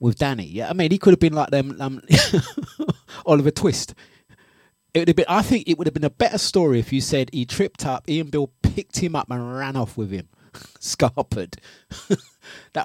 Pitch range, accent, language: 120-155 Hz, British, English